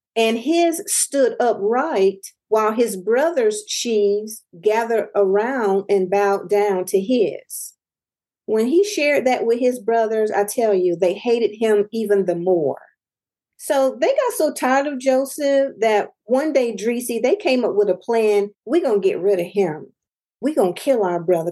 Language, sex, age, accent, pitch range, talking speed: English, female, 40-59, American, 205-265 Hz, 170 wpm